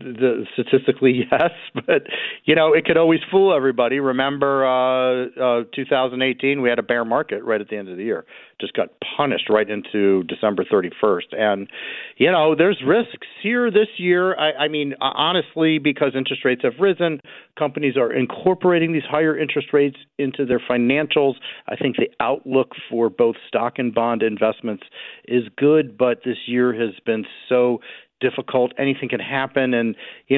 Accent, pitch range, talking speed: American, 115-145 Hz, 170 wpm